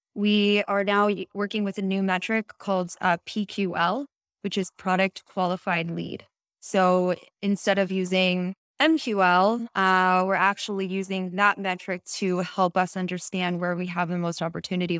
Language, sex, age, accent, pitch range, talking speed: English, female, 20-39, American, 180-205 Hz, 150 wpm